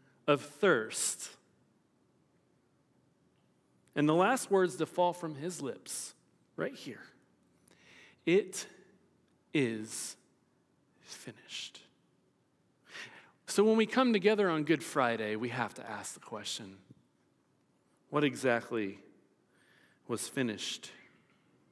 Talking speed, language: 95 wpm, English